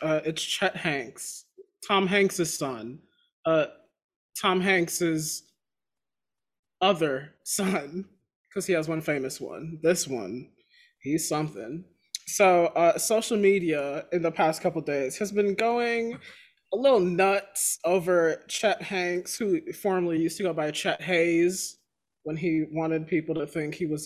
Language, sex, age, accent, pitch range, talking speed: English, male, 20-39, American, 160-205 Hz, 140 wpm